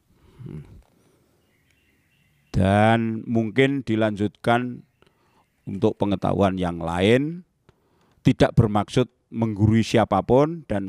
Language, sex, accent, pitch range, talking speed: Indonesian, male, native, 95-125 Hz, 65 wpm